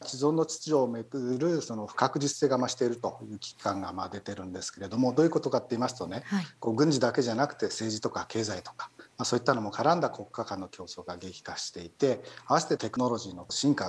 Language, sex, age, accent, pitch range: Japanese, male, 40-59, native, 105-145 Hz